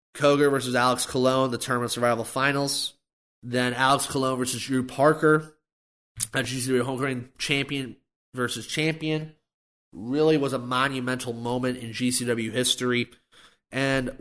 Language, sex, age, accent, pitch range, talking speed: English, male, 30-49, American, 120-145 Hz, 120 wpm